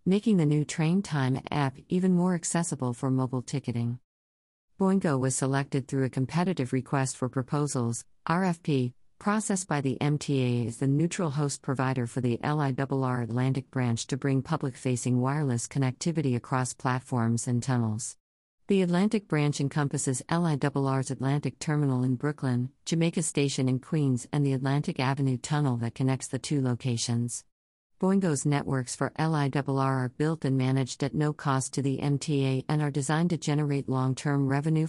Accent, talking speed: American, 155 wpm